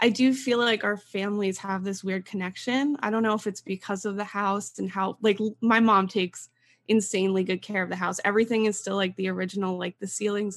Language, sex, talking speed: English, female, 225 wpm